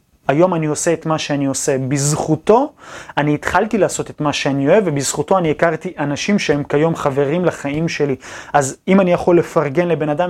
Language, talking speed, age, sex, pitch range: Hebrew, 180 wpm, 30-49, male, 145-175 Hz